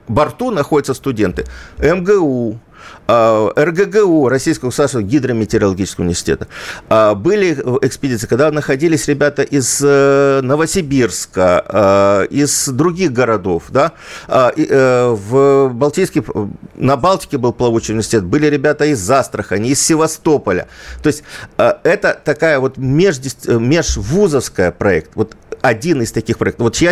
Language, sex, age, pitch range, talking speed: Russian, male, 50-69, 120-170 Hz, 105 wpm